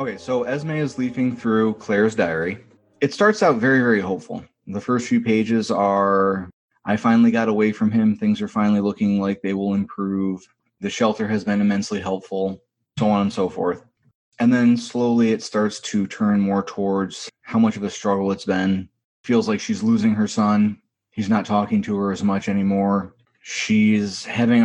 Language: English